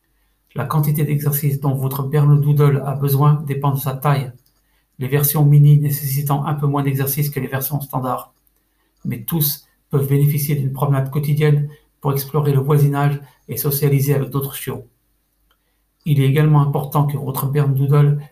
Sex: male